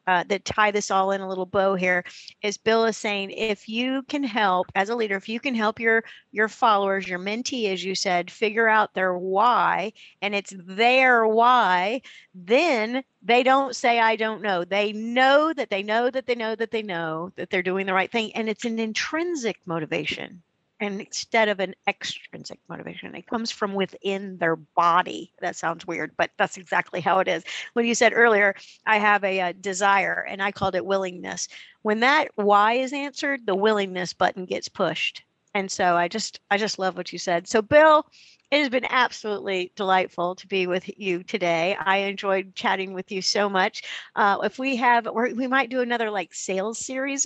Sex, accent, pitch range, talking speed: female, American, 190-235 Hz, 195 wpm